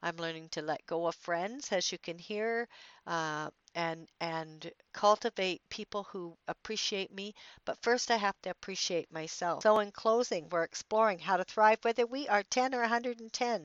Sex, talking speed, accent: female, 175 wpm, American